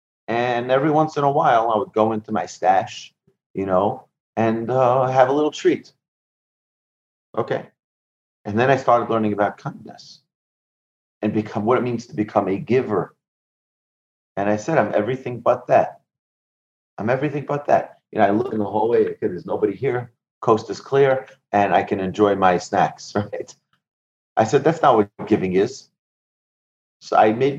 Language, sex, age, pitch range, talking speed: English, male, 30-49, 100-130 Hz, 170 wpm